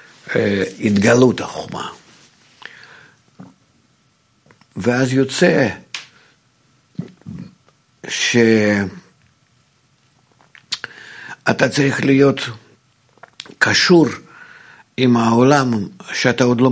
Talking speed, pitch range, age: 45 wpm, 105-130 Hz, 50-69